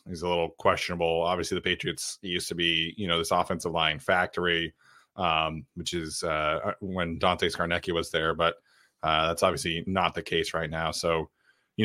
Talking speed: 180 wpm